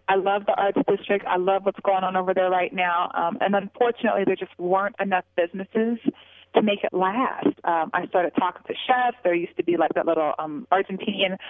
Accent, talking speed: American, 215 wpm